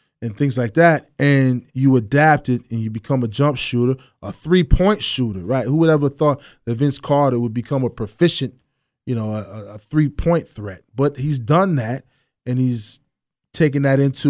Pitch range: 125-150 Hz